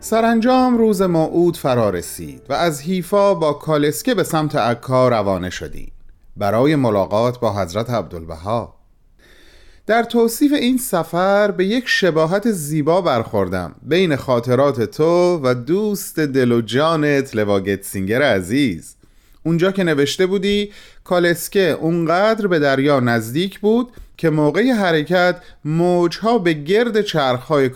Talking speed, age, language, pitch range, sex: 120 wpm, 30-49, Persian, 120-170 Hz, male